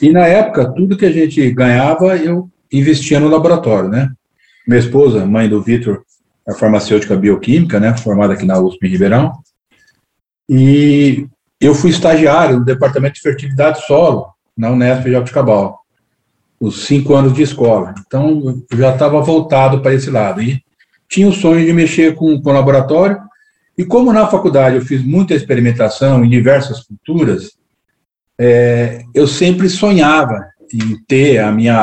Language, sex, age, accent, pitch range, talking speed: Portuguese, male, 50-69, Brazilian, 115-155 Hz, 160 wpm